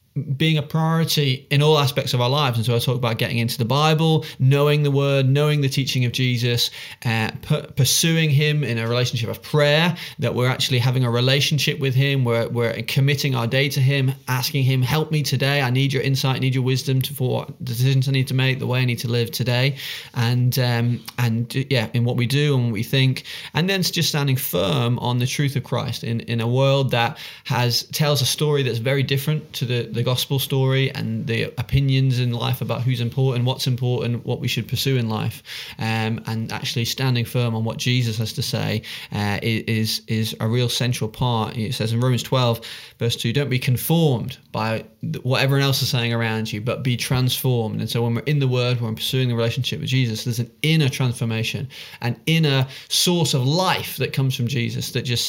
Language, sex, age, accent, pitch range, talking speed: English, male, 30-49, British, 120-140 Hz, 220 wpm